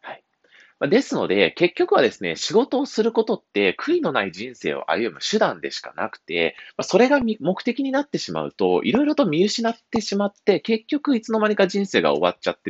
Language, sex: Japanese, male